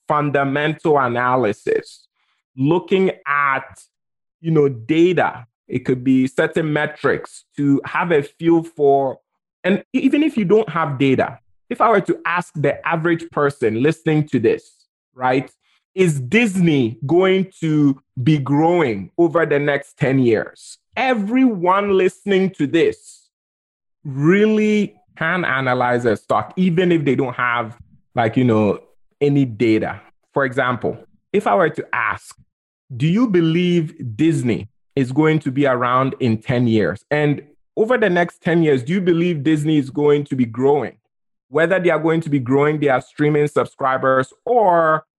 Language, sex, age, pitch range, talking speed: English, male, 20-39, 130-175 Hz, 145 wpm